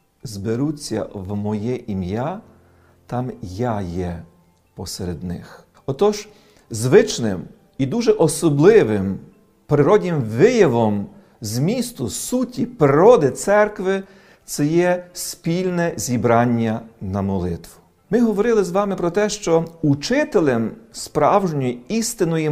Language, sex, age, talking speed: Ukrainian, male, 40-59, 100 wpm